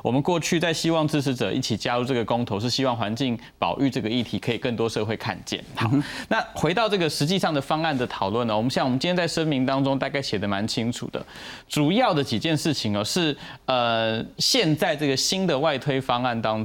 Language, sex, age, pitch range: Chinese, male, 20-39, 115-155 Hz